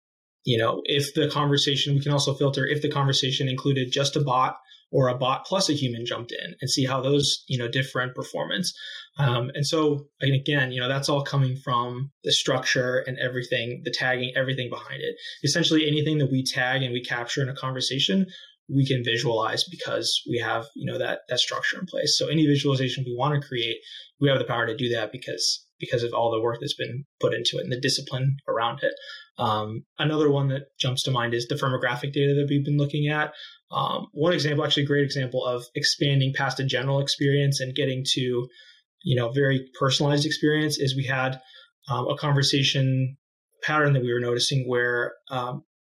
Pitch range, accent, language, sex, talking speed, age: 130-145 Hz, American, English, male, 205 wpm, 20-39